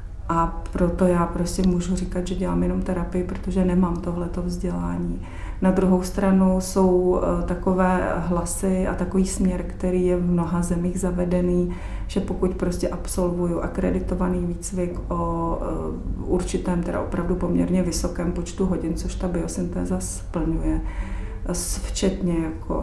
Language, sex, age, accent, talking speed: Czech, female, 30-49, native, 130 wpm